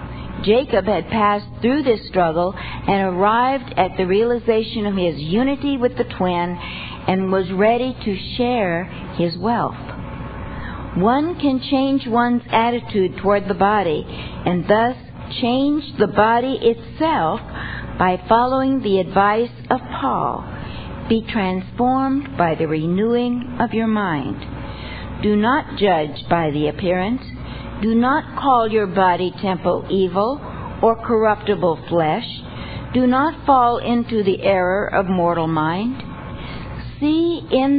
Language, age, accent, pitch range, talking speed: English, 60-79, American, 185-245 Hz, 125 wpm